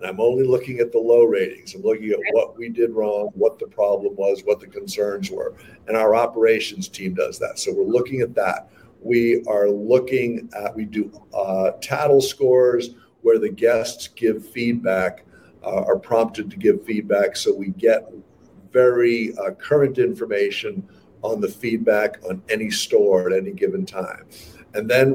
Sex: male